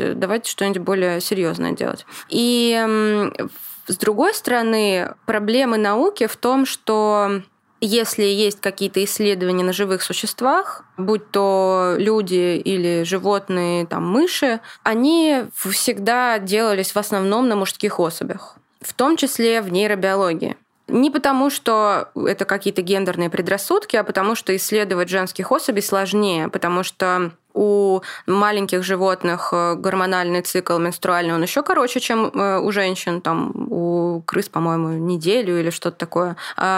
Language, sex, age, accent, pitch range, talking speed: Russian, female, 20-39, native, 180-220 Hz, 125 wpm